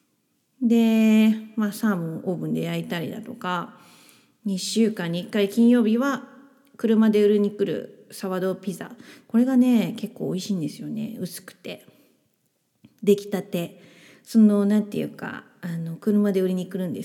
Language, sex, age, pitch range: Japanese, female, 30-49, 175-225 Hz